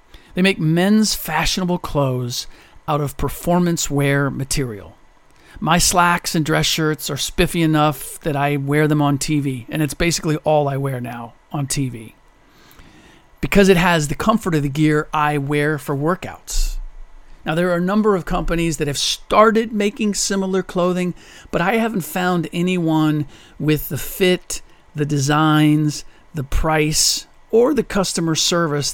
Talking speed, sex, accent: 155 wpm, male, American